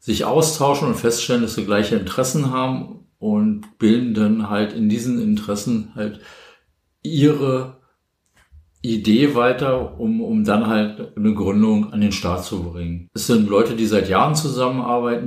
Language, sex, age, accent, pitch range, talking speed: English, male, 50-69, German, 100-125 Hz, 150 wpm